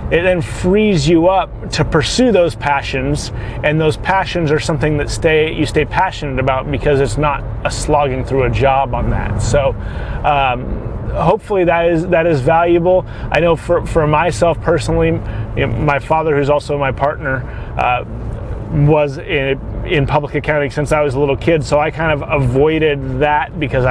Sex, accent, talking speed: male, American, 180 wpm